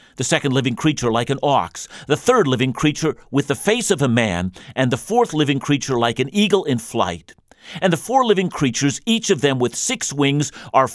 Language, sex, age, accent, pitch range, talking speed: English, male, 50-69, American, 120-165 Hz, 215 wpm